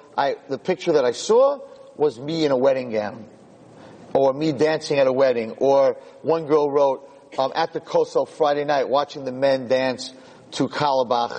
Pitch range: 130-165 Hz